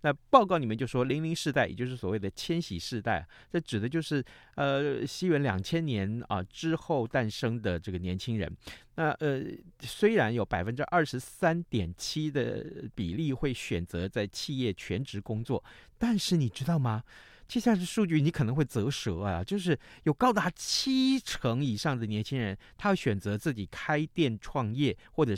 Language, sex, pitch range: Chinese, male, 110-165 Hz